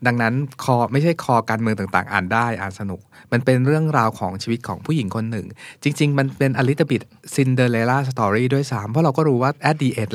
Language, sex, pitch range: Thai, male, 115-145 Hz